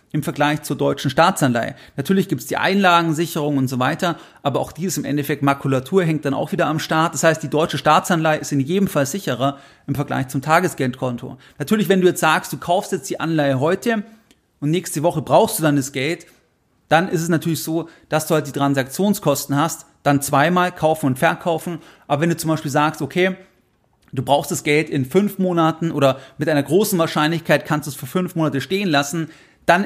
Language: German